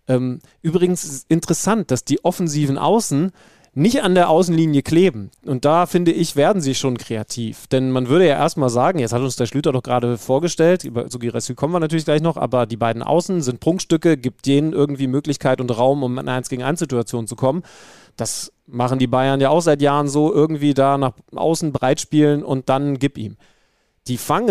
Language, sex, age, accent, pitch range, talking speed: German, male, 30-49, German, 130-165 Hz, 205 wpm